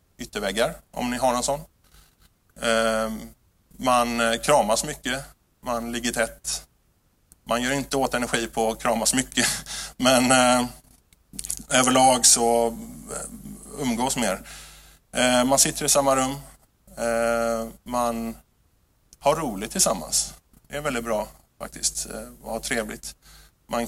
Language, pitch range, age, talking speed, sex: Swedish, 110-130 Hz, 20-39, 110 wpm, male